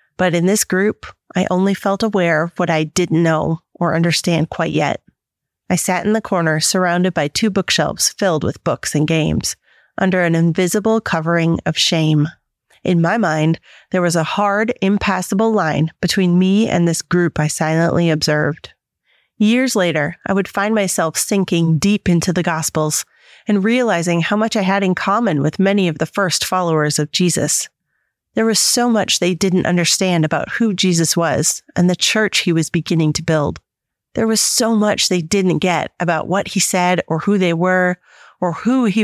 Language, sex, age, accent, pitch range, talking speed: English, female, 30-49, American, 165-200 Hz, 180 wpm